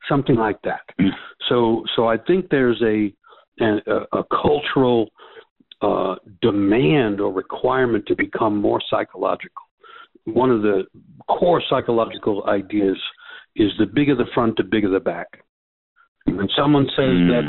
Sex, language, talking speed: male, English, 135 wpm